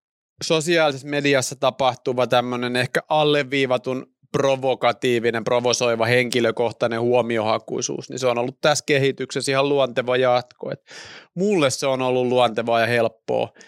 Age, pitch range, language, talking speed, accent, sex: 30-49, 120-145 Hz, Finnish, 110 wpm, native, male